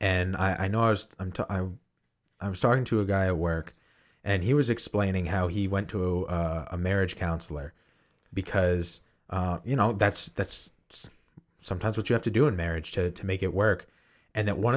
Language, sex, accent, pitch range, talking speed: English, male, American, 90-115 Hz, 205 wpm